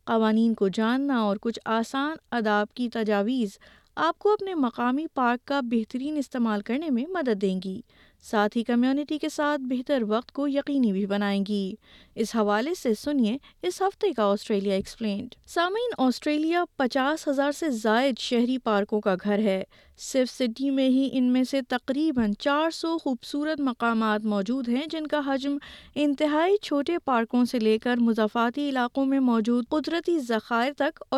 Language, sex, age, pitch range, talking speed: Urdu, female, 20-39, 225-295 Hz, 160 wpm